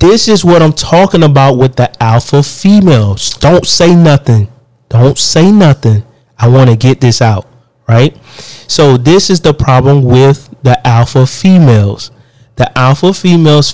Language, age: English, 30-49